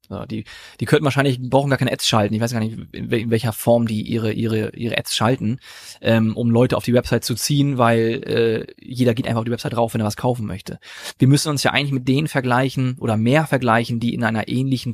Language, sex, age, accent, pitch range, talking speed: German, male, 30-49, German, 120-145 Hz, 230 wpm